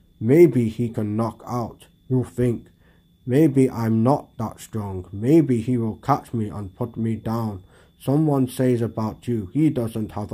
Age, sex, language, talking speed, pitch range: 20-39, male, English, 165 wpm, 105-125 Hz